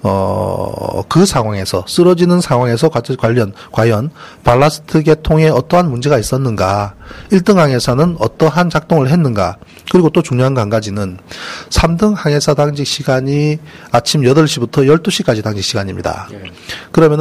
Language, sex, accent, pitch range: Korean, male, native, 115-155 Hz